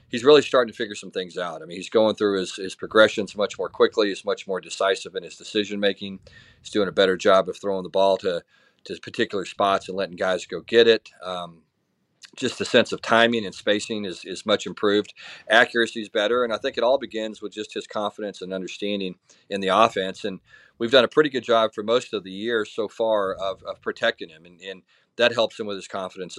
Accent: American